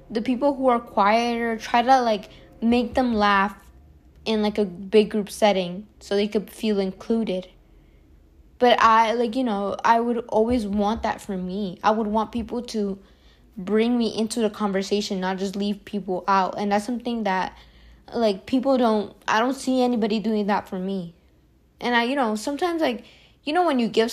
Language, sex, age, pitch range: English, female, 10-29, 195-235 Hz